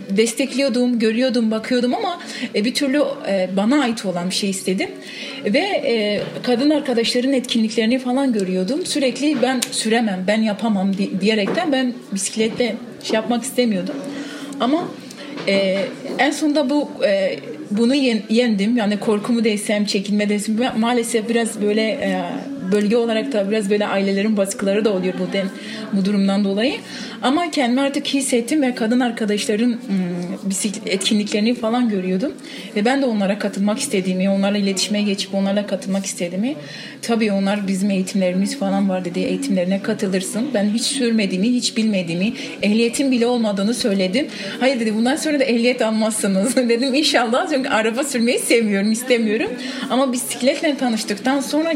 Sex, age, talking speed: female, 40-59, 135 wpm